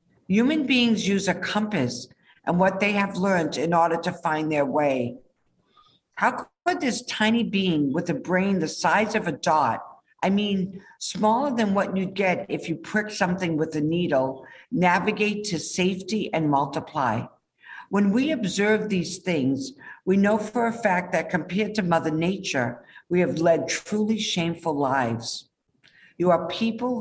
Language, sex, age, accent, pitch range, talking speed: English, female, 60-79, American, 155-200 Hz, 160 wpm